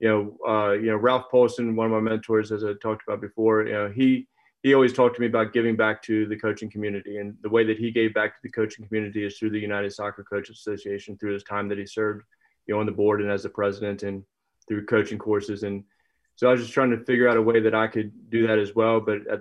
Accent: American